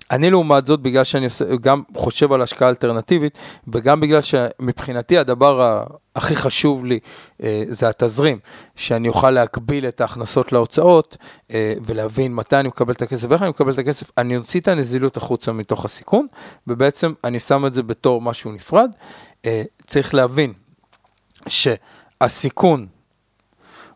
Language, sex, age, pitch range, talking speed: Hebrew, male, 40-59, 120-170 Hz, 135 wpm